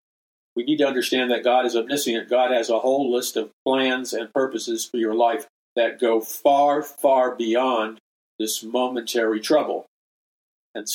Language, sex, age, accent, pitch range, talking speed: English, male, 50-69, American, 120-150 Hz, 160 wpm